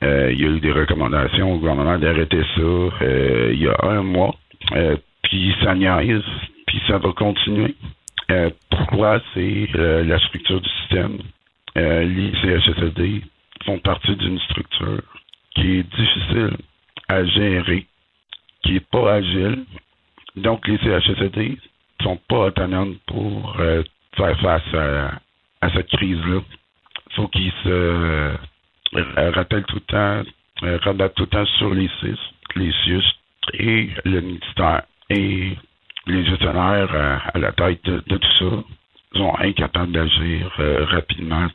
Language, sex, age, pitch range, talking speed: French, male, 60-79, 85-100 Hz, 140 wpm